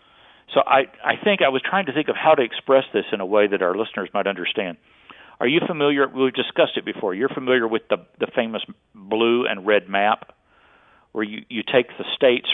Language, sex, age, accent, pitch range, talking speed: English, male, 50-69, American, 105-135 Hz, 220 wpm